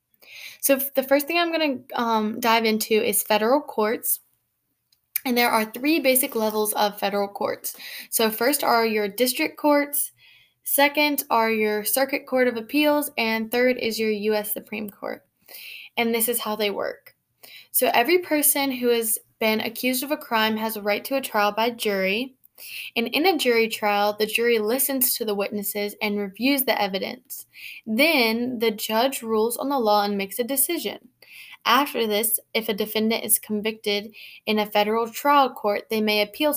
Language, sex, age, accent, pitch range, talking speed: English, female, 10-29, American, 215-265 Hz, 175 wpm